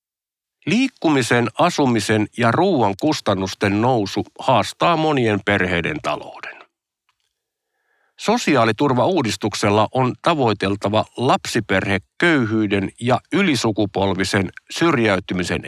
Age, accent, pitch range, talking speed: 50-69, native, 105-150 Hz, 70 wpm